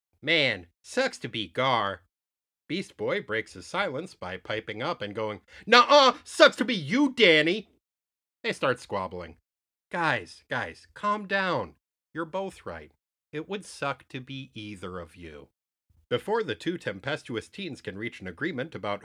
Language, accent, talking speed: English, American, 160 wpm